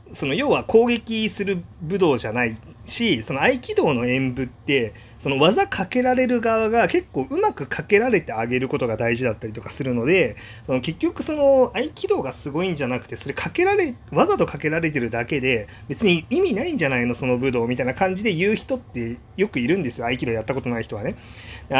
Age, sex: 30-49, male